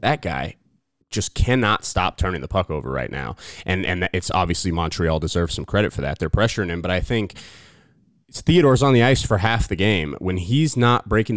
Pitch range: 95-135 Hz